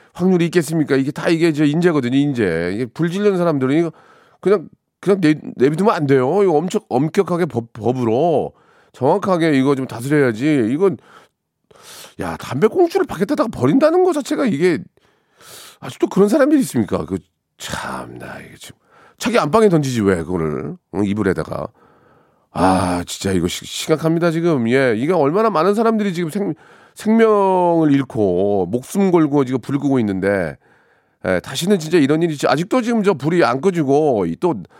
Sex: male